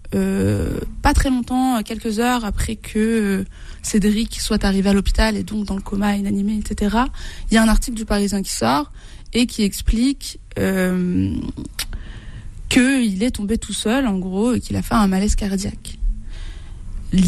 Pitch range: 185-225 Hz